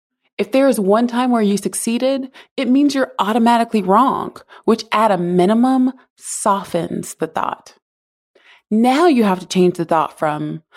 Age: 30-49